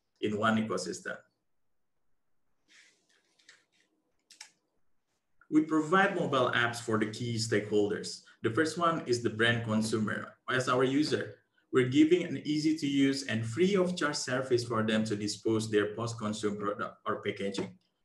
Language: English